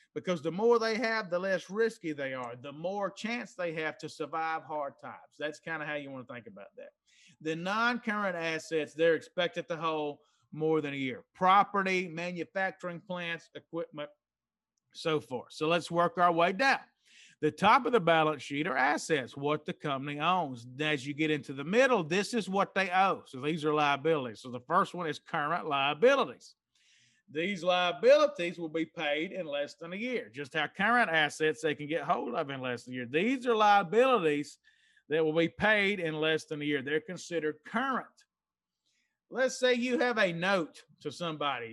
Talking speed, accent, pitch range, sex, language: 190 wpm, American, 150-190 Hz, male, English